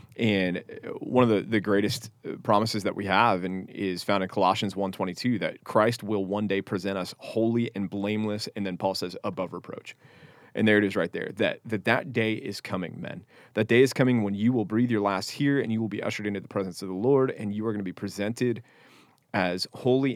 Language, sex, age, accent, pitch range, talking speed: English, male, 30-49, American, 100-115 Hz, 230 wpm